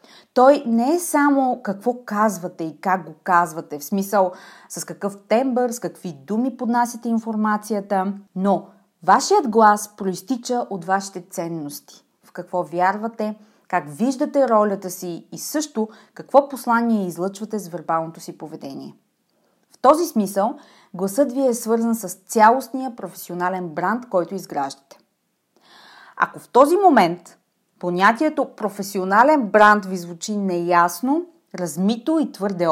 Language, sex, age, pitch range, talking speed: Bulgarian, female, 30-49, 180-245 Hz, 125 wpm